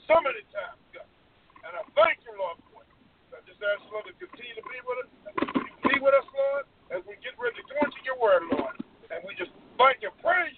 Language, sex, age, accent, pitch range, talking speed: English, male, 50-69, American, 245-345 Hz, 240 wpm